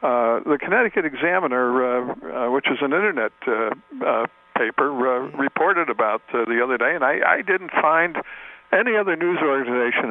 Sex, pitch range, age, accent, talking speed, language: male, 125-145 Hz, 60-79, American, 170 wpm, English